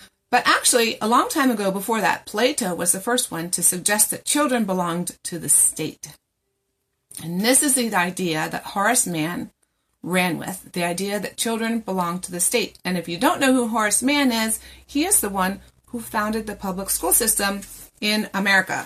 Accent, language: American, English